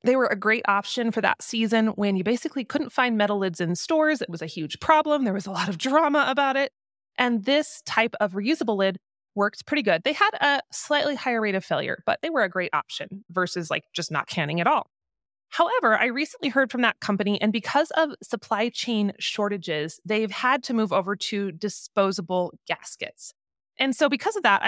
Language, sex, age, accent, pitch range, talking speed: English, female, 20-39, American, 195-255 Hz, 210 wpm